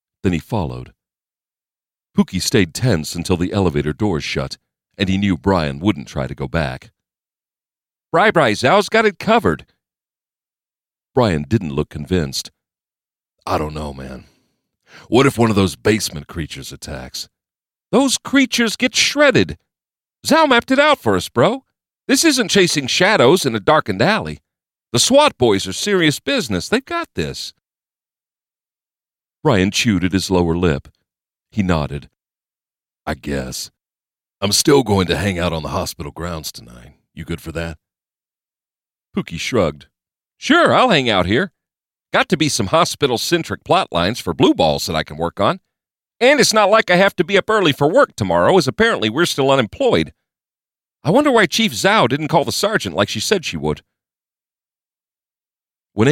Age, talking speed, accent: 50-69, 160 wpm, American